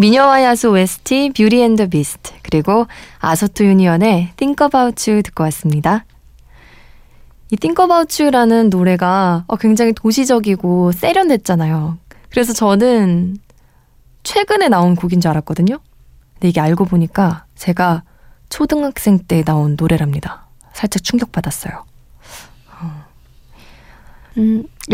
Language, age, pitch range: Korean, 20-39, 175-240 Hz